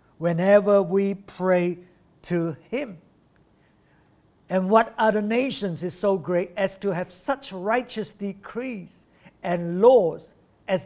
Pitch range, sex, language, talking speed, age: 180-220 Hz, male, English, 115 wpm, 60-79